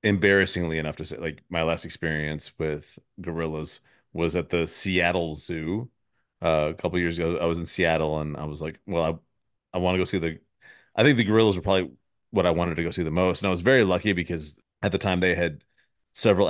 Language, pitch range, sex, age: English, 85-105 Hz, male, 30-49